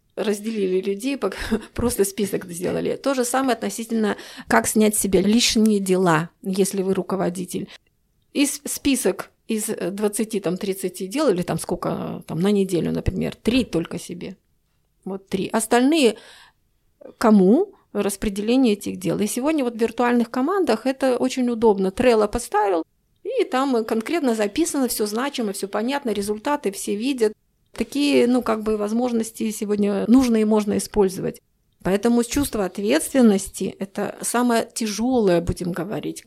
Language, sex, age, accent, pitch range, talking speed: Russian, female, 30-49, native, 195-245 Hz, 130 wpm